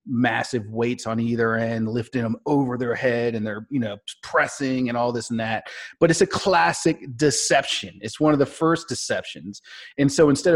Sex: male